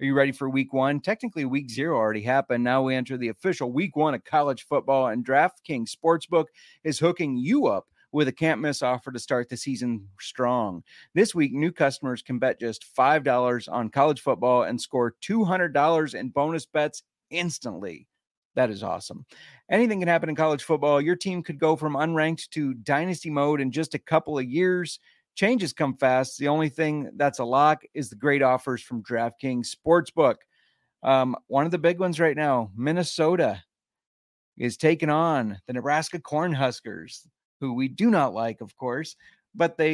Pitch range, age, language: 125-165 Hz, 30-49, English